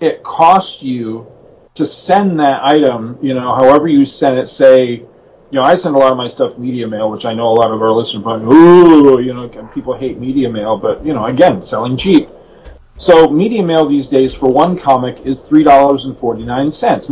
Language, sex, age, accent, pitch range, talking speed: English, male, 40-59, American, 125-165 Hz, 205 wpm